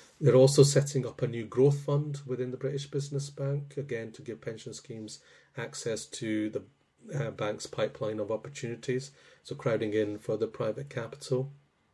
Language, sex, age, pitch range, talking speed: English, male, 30-49, 105-135 Hz, 165 wpm